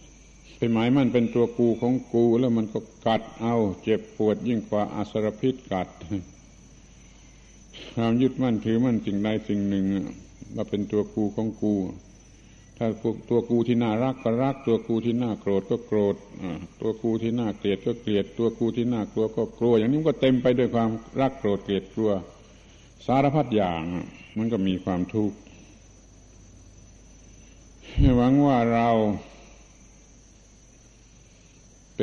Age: 70-89